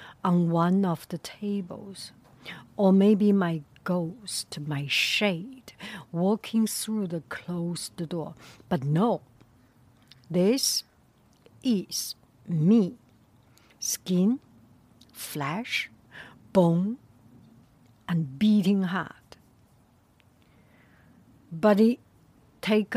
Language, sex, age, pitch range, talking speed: English, female, 60-79, 165-210 Hz, 75 wpm